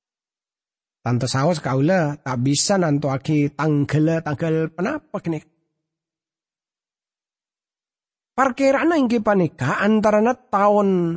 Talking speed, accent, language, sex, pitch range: 85 wpm, Indonesian, English, male, 135-215 Hz